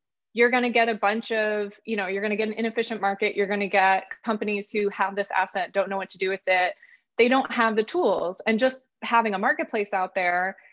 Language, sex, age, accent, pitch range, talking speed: English, female, 20-39, American, 185-220 Hz, 245 wpm